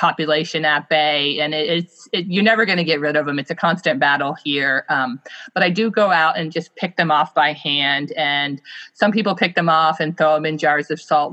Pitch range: 150-185 Hz